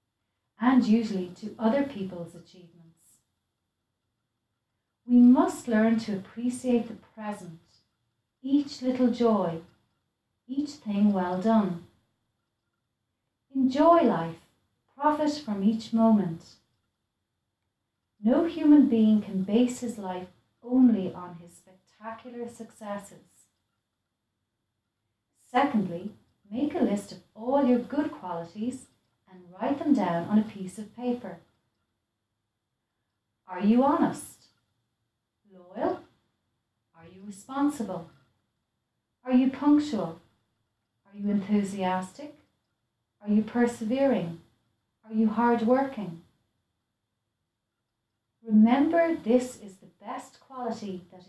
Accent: Irish